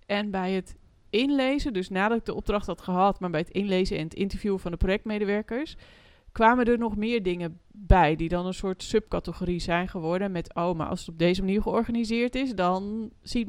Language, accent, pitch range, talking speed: Dutch, Dutch, 180-220 Hz, 205 wpm